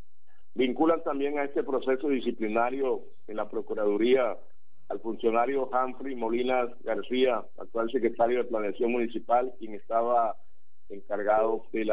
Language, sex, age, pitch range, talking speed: Spanish, male, 50-69, 115-135 Hz, 120 wpm